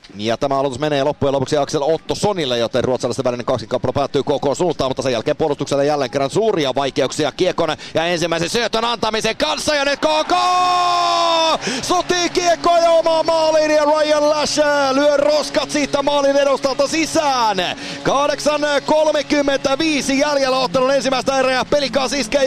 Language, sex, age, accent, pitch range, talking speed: Finnish, male, 30-49, native, 185-300 Hz, 150 wpm